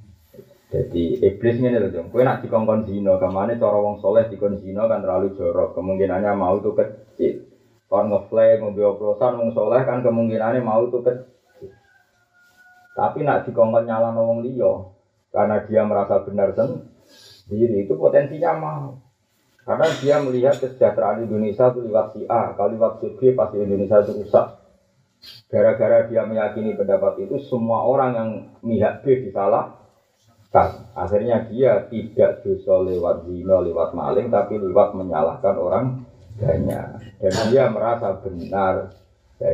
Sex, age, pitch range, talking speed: male, 30-49, 100-125 Hz, 140 wpm